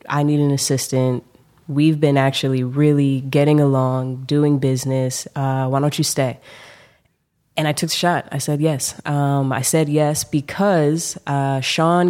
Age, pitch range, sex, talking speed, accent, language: 20-39, 135-155 Hz, female, 160 wpm, American, English